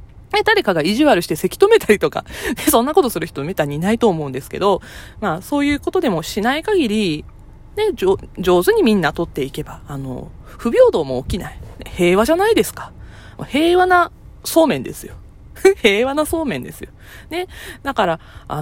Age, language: 20-39, Japanese